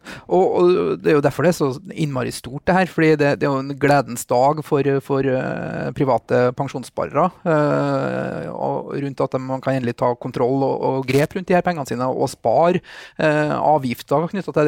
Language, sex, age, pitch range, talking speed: English, male, 30-49, 130-160 Hz, 180 wpm